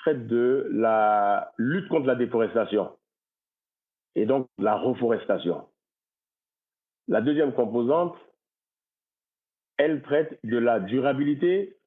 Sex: male